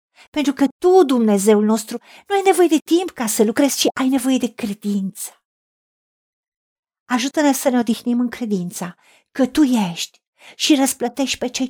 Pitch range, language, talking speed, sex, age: 205-290 Hz, Romanian, 160 wpm, female, 50-69